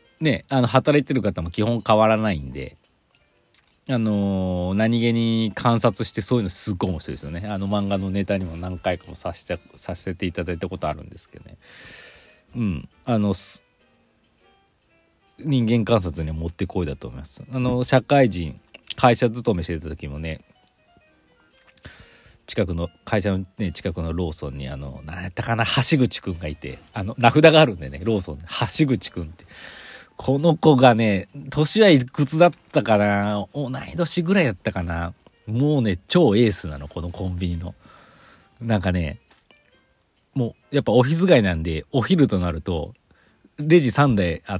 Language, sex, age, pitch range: Japanese, male, 40-59, 85-120 Hz